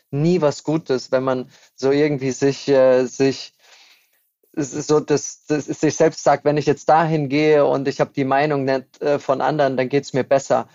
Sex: male